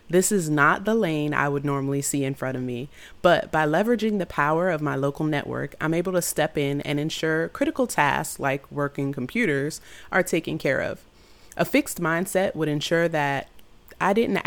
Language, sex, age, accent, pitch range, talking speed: English, female, 30-49, American, 140-185 Hz, 190 wpm